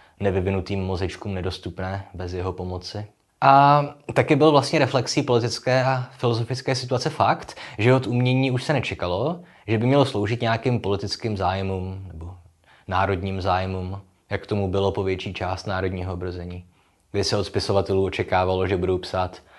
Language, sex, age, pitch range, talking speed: Czech, male, 20-39, 90-115 Hz, 145 wpm